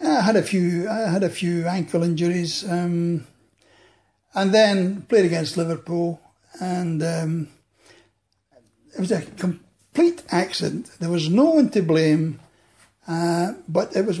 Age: 60-79